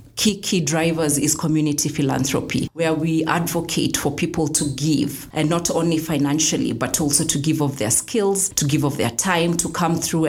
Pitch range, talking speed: 145-165 Hz, 185 wpm